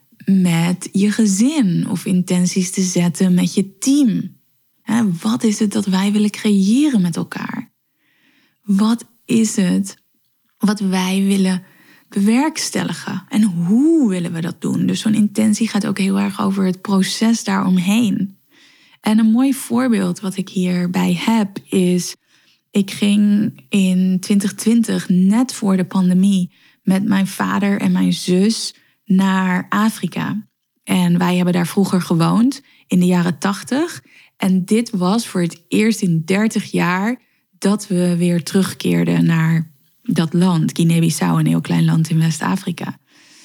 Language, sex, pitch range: Dutch, female, 180-220 Hz